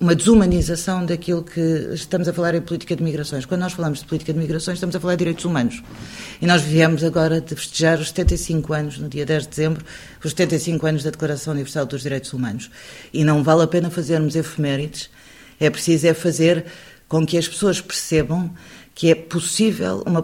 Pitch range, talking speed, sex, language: 145-170 Hz, 200 wpm, female, Portuguese